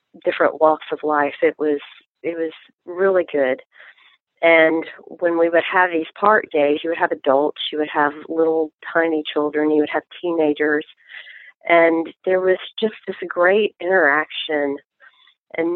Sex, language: female, English